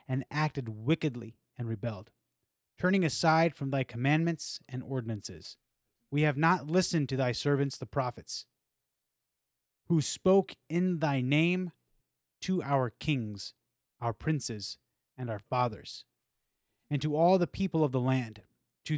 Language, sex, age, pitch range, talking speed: English, male, 30-49, 120-155 Hz, 135 wpm